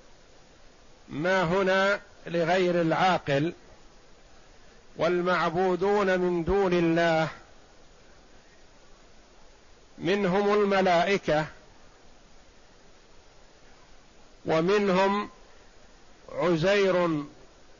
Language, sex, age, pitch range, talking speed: Arabic, male, 50-69, 160-195 Hz, 40 wpm